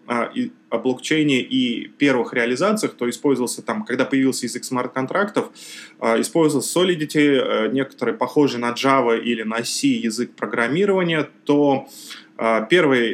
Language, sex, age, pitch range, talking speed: Russian, male, 20-39, 115-140 Hz, 115 wpm